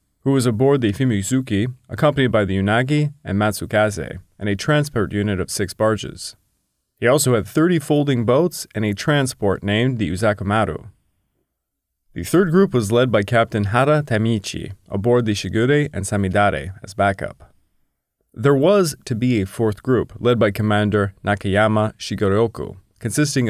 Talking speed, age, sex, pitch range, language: 150 wpm, 30-49, male, 100-130 Hz, English